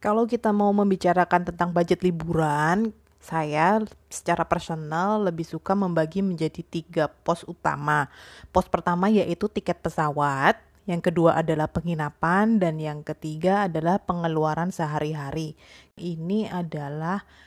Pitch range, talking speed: 160-185 Hz, 115 wpm